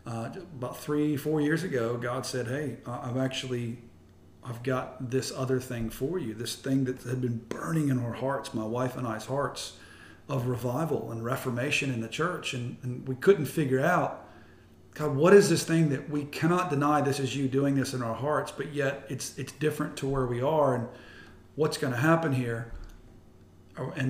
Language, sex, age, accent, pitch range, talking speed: English, male, 40-59, American, 120-145 Hz, 195 wpm